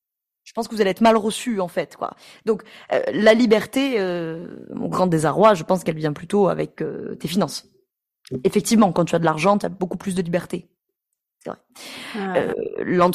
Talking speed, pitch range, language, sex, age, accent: 185 wpm, 180-235 Hz, French, female, 20-39, French